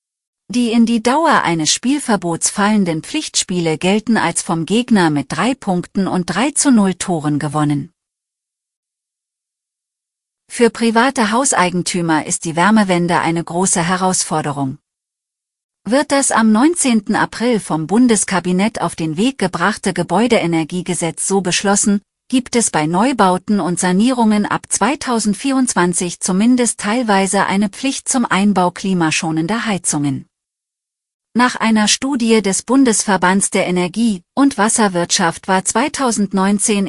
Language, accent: German, German